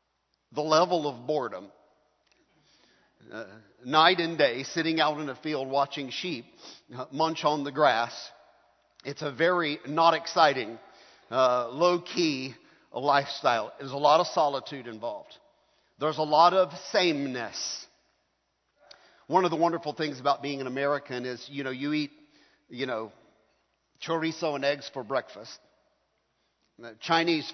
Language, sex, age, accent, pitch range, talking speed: English, male, 50-69, American, 135-160 Hz, 135 wpm